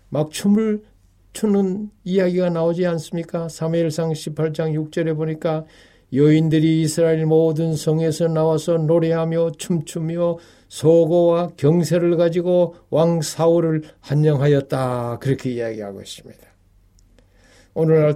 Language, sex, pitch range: Korean, male, 125-175 Hz